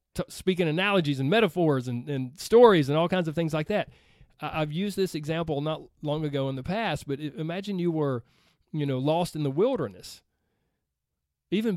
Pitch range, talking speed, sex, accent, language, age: 145-185 Hz, 180 wpm, male, American, English, 40-59